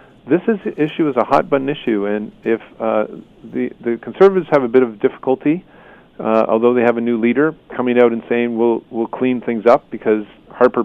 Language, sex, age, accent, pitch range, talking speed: English, male, 40-59, American, 115-140 Hz, 210 wpm